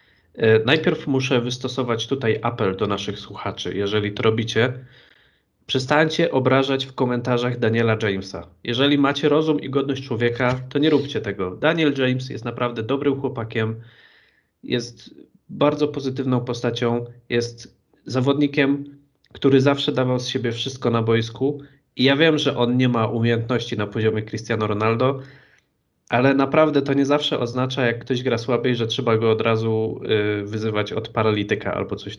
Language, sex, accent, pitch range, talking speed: Polish, male, native, 110-135 Hz, 150 wpm